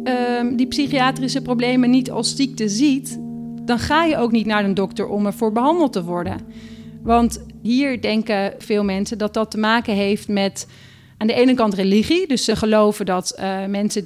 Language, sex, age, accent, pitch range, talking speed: Dutch, female, 40-59, Dutch, 200-240 Hz, 180 wpm